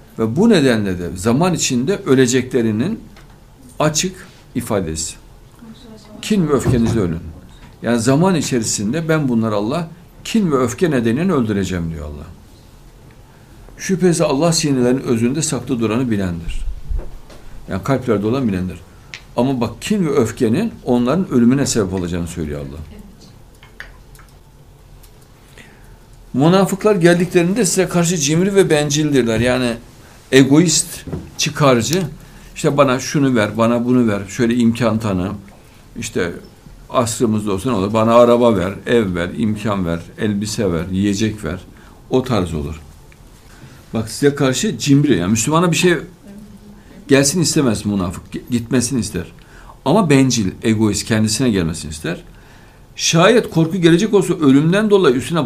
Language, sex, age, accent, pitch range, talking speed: Turkish, male, 60-79, native, 105-155 Hz, 120 wpm